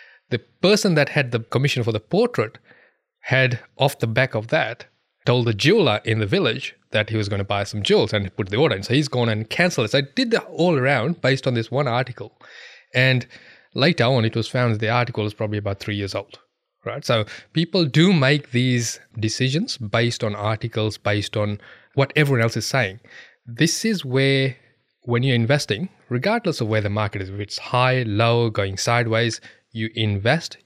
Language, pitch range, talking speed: English, 110-135 Hz, 200 wpm